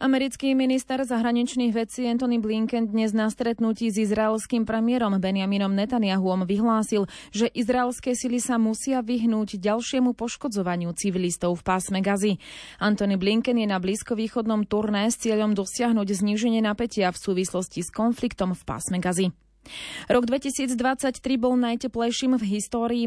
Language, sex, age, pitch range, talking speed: Slovak, female, 20-39, 200-235 Hz, 135 wpm